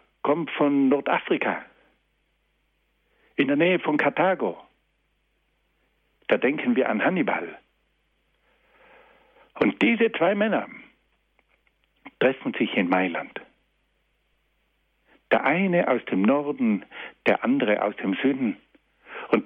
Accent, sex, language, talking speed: German, male, German, 100 wpm